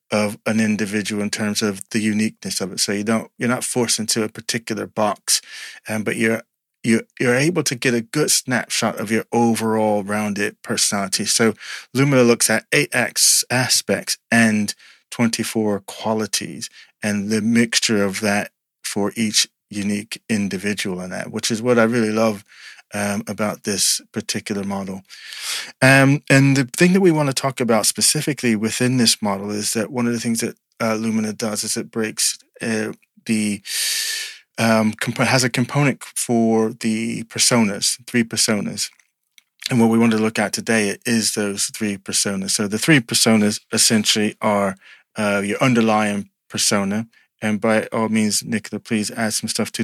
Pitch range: 105-120 Hz